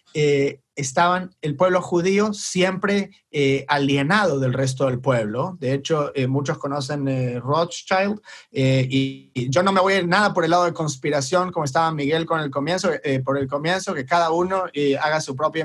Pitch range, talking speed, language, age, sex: 135-175 Hz, 195 wpm, English, 30-49, male